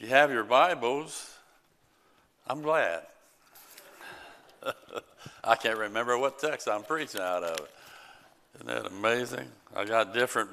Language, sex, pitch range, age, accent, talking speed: English, male, 105-125 Hz, 60-79, American, 120 wpm